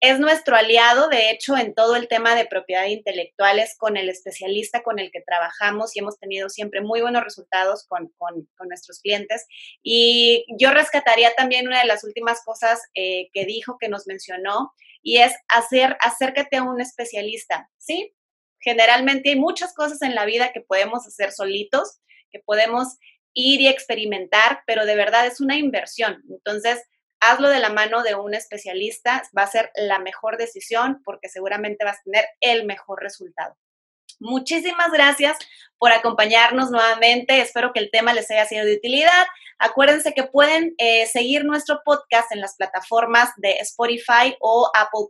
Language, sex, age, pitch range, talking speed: Spanish, female, 30-49, 205-260 Hz, 170 wpm